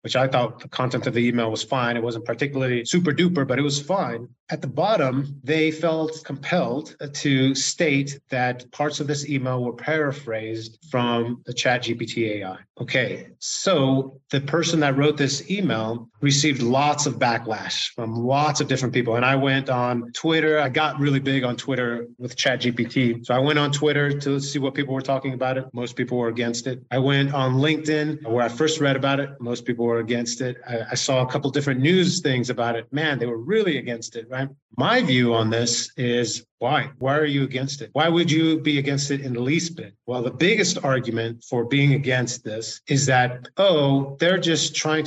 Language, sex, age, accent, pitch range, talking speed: English, male, 30-49, American, 125-150 Hz, 205 wpm